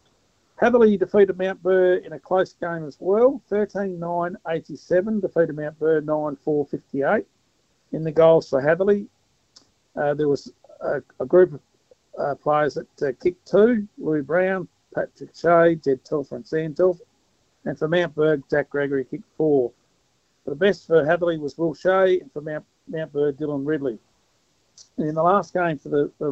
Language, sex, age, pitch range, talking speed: English, male, 50-69, 140-175 Hz, 175 wpm